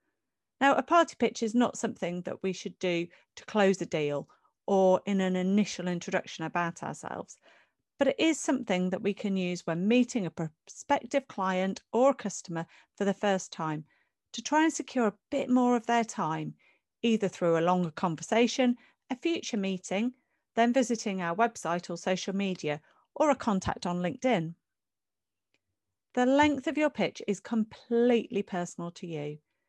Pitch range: 175-245 Hz